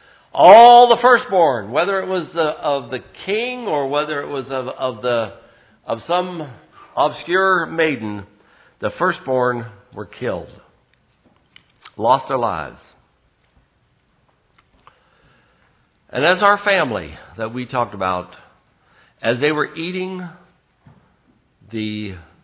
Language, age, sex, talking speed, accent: English, 60-79, male, 100 wpm, American